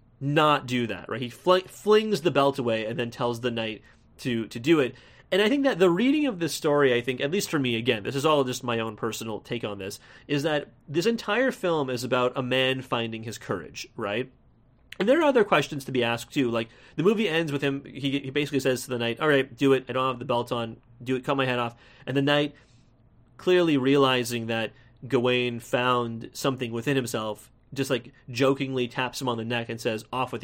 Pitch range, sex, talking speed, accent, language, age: 120-150 Hz, male, 235 wpm, American, English, 30-49